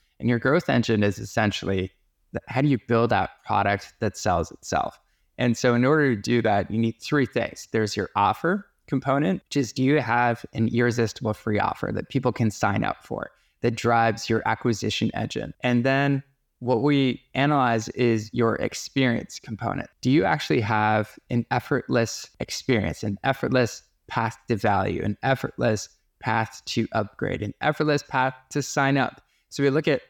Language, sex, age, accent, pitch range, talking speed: English, male, 20-39, American, 110-135 Hz, 170 wpm